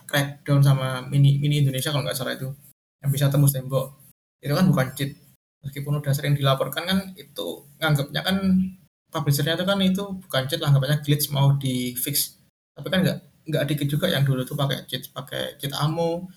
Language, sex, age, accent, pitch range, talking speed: Indonesian, male, 20-39, native, 140-155 Hz, 180 wpm